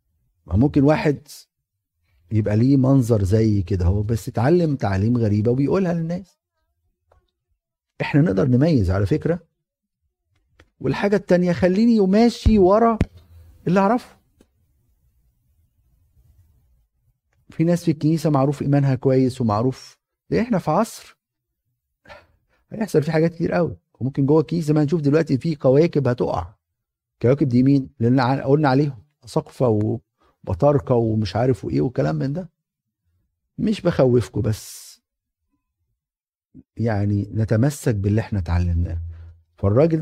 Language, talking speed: Arabic, 115 wpm